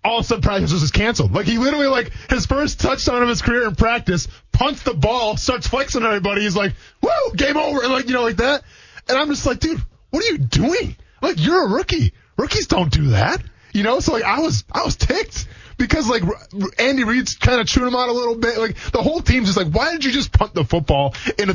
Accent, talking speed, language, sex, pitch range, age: American, 250 wpm, English, male, 135-230 Hz, 20-39